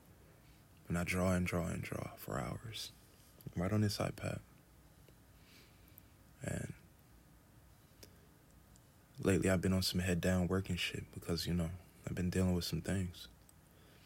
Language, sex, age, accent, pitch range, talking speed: English, male, 20-39, American, 85-100 Hz, 135 wpm